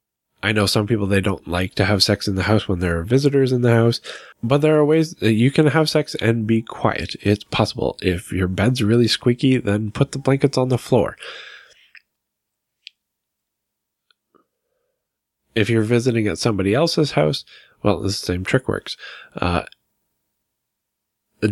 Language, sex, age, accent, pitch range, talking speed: English, male, 10-29, American, 95-120 Hz, 165 wpm